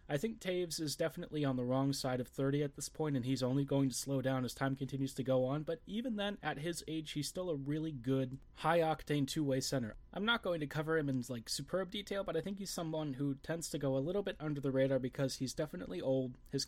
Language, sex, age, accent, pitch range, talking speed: English, male, 20-39, American, 130-155 Hz, 255 wpm